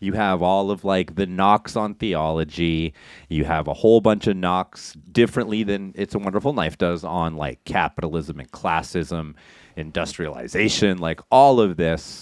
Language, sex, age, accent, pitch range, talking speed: English, male, 30-49, American, 90-120 Hz, 160 wpm